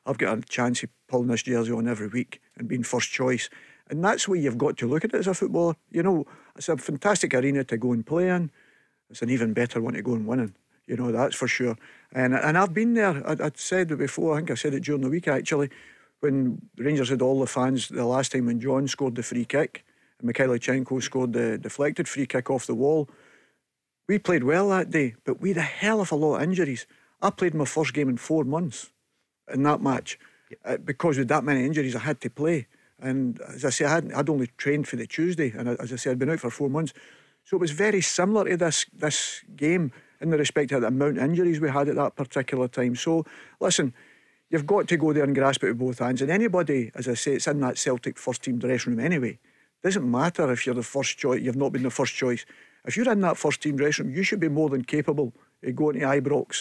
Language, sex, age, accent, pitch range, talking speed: English, male, 50-69, British, 125-160 Hz, 250 wpm